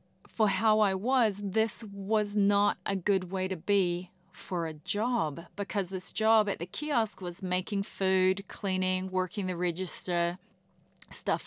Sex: female